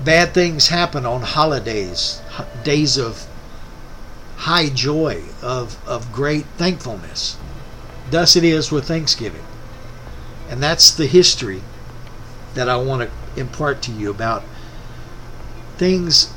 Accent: American